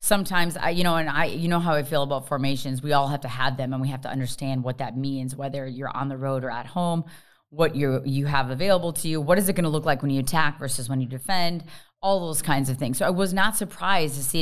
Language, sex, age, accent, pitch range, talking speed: English, female, 30-49, American, 140-170 Hz, 285 wpm